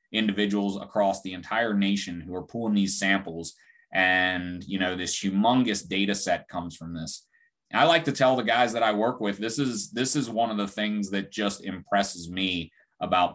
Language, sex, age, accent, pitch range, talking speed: English, male, 30-49, American, 95-115 Hz, 195 wpm